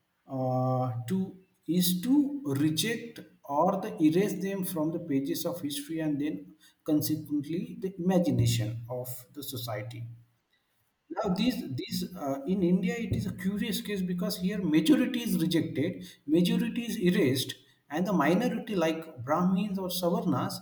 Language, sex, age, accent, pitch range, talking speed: English, male, 50-69, Indian, 135-185 Hz, 140 wpm